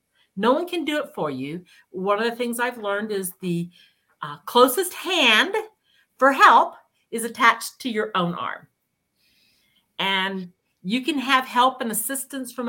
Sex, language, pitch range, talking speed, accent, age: female, English, 205-270 Hz, 160 wpm, American, 50-69